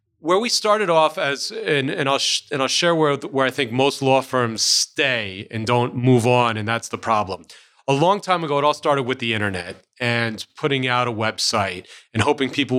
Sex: male